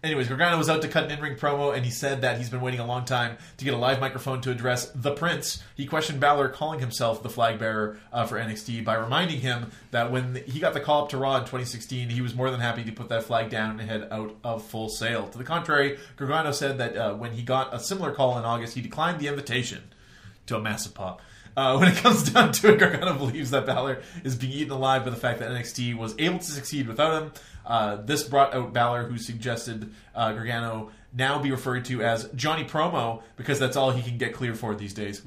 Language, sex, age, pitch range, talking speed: English, male, 20-39, 115-140 Hz, 245 wpm